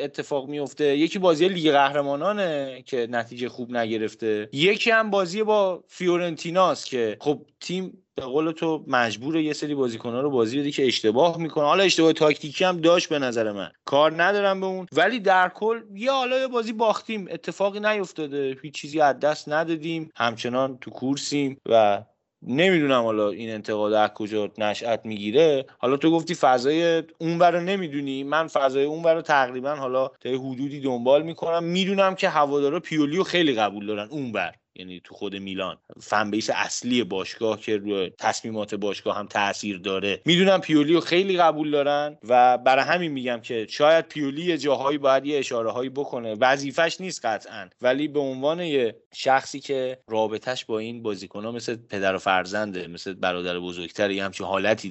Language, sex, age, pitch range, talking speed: Persian, male, 30-49, 110-165 Hz, 165 wpm